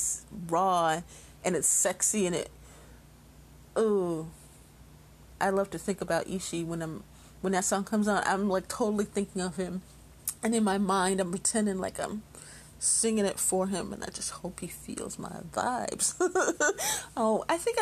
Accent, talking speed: American, 165 wpm